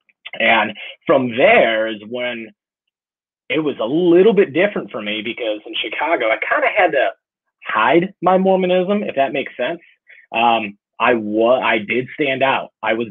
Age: 30-49